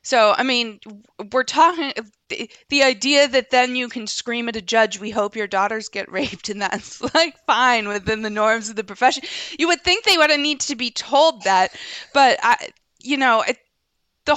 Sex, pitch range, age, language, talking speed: female, 200-265 Hz, 20-39, English, 200 wpm